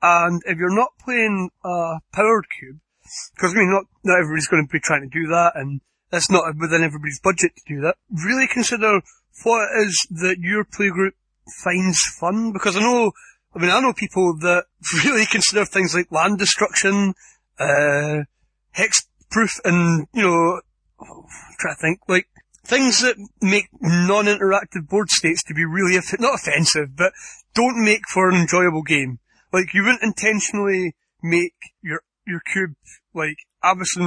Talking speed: 165 wpm